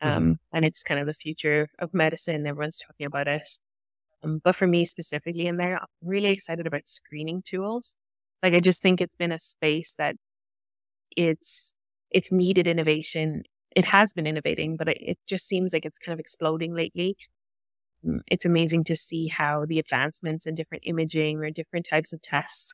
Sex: female